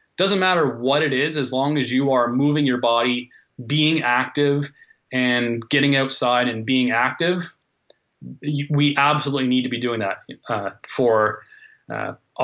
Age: 30-49